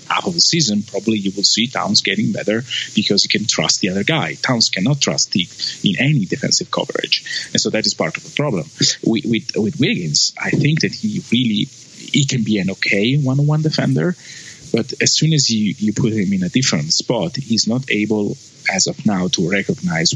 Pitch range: 105-150 Hz